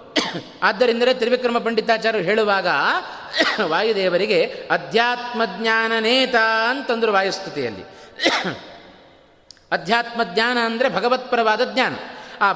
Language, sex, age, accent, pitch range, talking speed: Kannada, male, 30-49, native, 160-245 Hz, 75 wpm